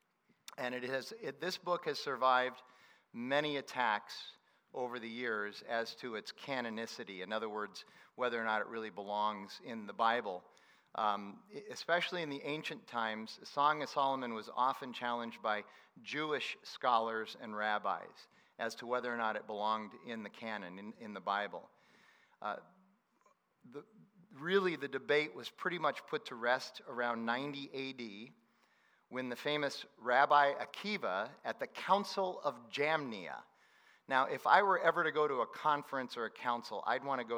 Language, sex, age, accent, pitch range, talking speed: English, male, 40-59, American, 115-145 Hz, 160 wpm